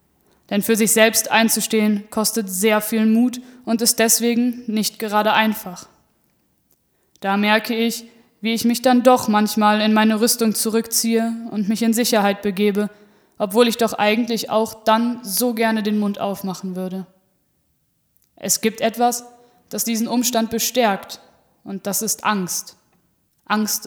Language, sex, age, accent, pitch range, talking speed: German, female, 20-39, German, 205-230 Hz, 145 wpm